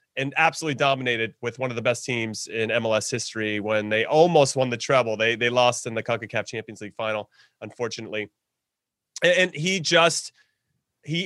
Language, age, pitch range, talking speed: English, 30-49, 130-180 Hz, 175 wpm